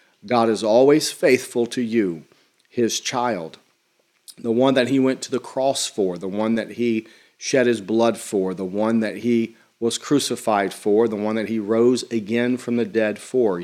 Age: 40-59